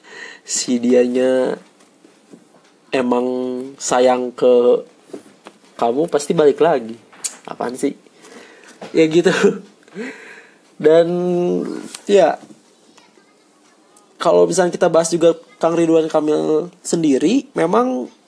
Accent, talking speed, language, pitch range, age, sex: native, 80 wpm, Indonesian, 125-170 Hz, 20-39, male